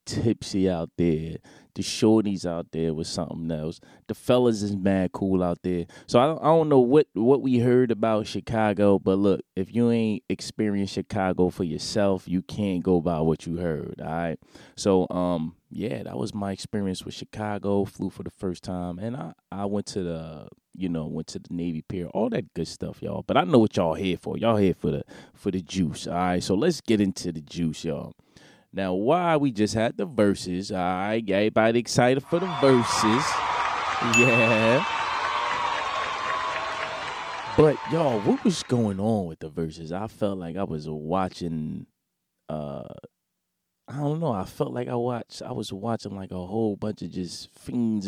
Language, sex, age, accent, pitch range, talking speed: English, male, 20-39, American, 90-115 Hz, 185 wpm